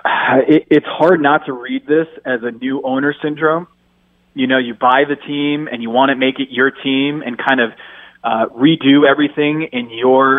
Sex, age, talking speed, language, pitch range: male, 20-39, 190 wpm, English, 135-180 Hz